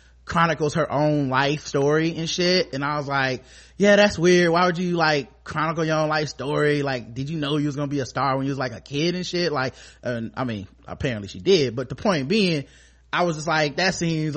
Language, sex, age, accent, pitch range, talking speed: English, male, 20-39, American, 140-195 Hz, 240 wpm